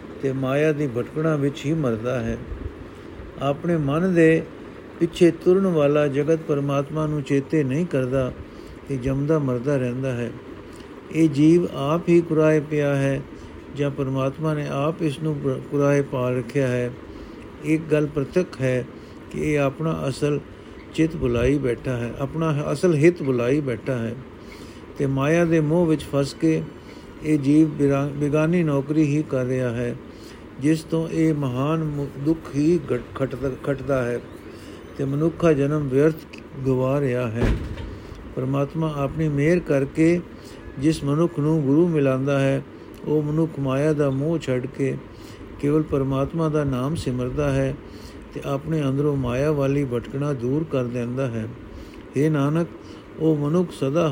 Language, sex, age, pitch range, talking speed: Punjabi, male, 50-69, 135-155 Hz, 135 wpm